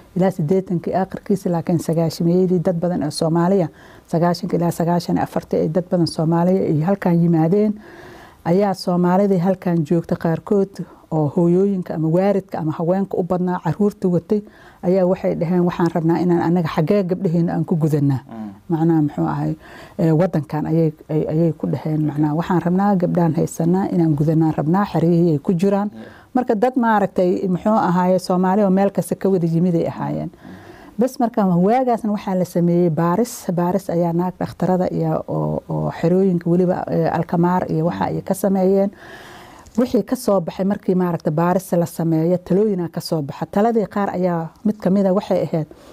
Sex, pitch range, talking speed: female, 165-195 Hz, 40 wpm